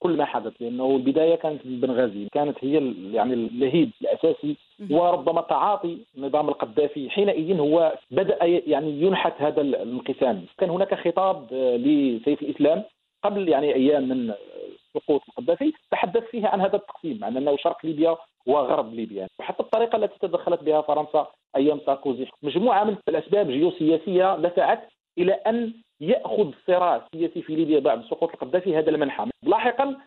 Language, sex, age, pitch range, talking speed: English, male, 50-69, 150-220 Hz, 145 wpm